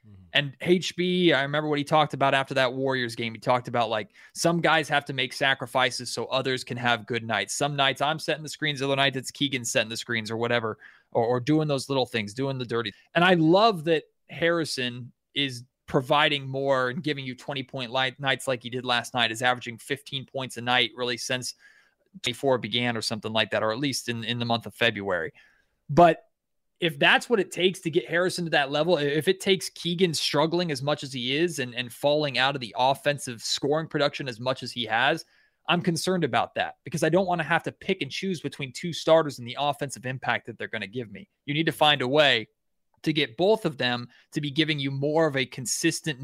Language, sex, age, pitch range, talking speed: English, male, 30-49, 125-155 Hz, 230 wpm